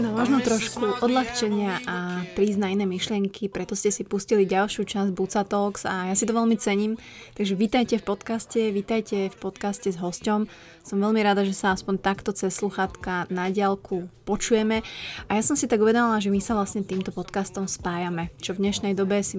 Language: Slovak